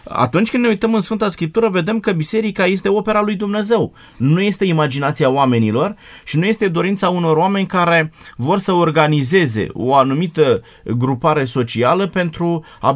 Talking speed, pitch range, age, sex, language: 160 wpm, 135-180 Hz, 20-39, male, Romanian